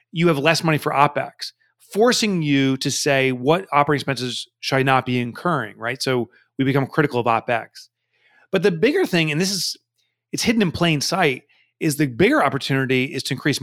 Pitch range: 120-160 Hz